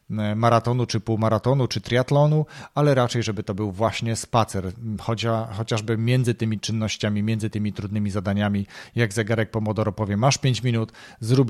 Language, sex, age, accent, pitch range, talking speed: Polish, male, 40-59, native, 110-130 Hz, 145 wpm